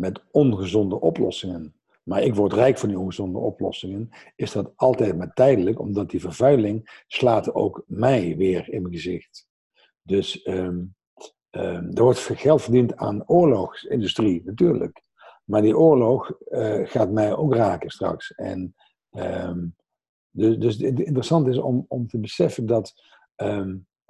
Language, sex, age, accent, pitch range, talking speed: Dutch, male, 50-69, Dutch, 95-130 Hz, 145 wpm